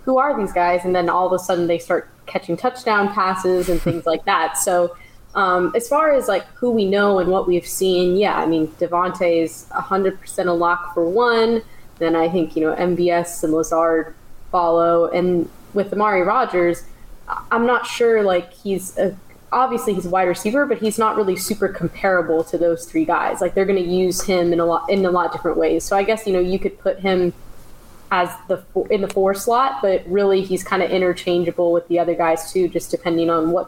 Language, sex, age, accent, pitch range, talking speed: English, female, 10-29, American, 170-195 Hz, 215 wpm